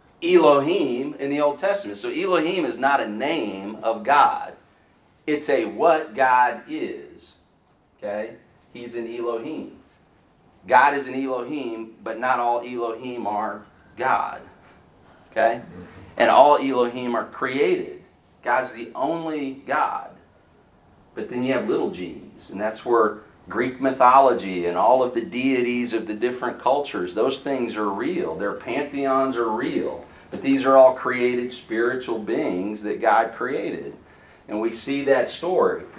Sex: male